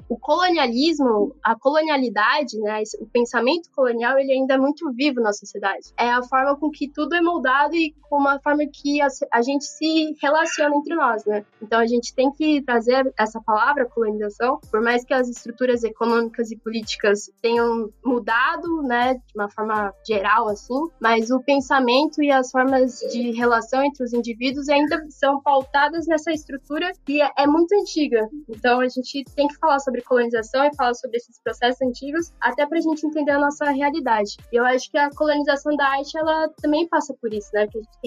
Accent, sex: Brazilian, female